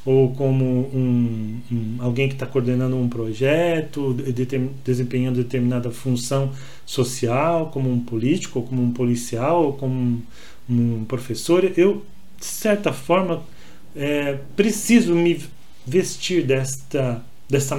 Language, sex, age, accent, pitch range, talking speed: Portuguese, male, 40-59, Brazilian, 125-165 Hz, 130 wpm